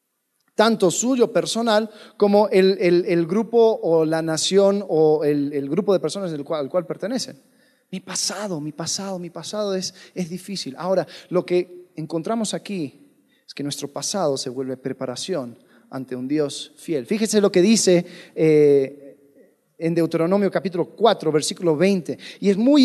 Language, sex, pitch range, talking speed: Spanish, male, 185-265 Hz, 160 wpm